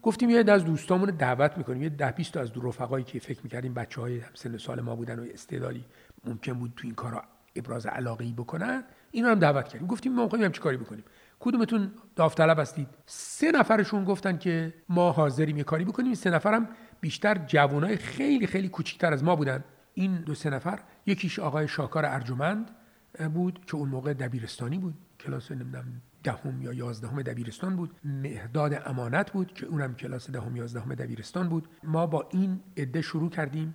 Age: 50-69